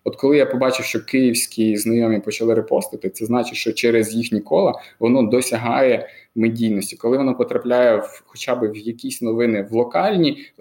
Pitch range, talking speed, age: 115-145 Hz, 165 wpm, 20-39